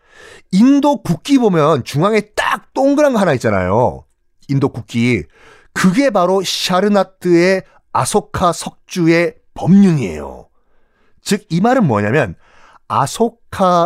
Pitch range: 125-205 Hz